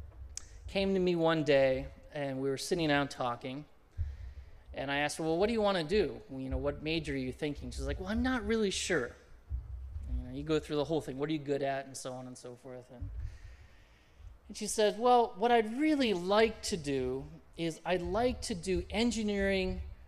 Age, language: 20-39, English